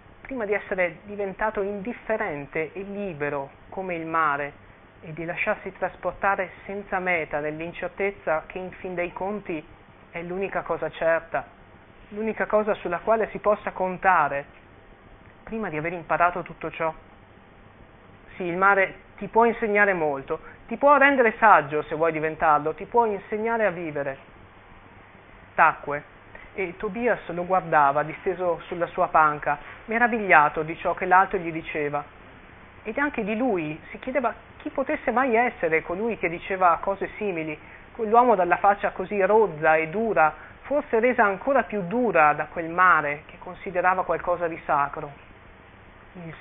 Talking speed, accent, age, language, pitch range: 140 wpm, native, 30-49, Italian, 150-205 Hz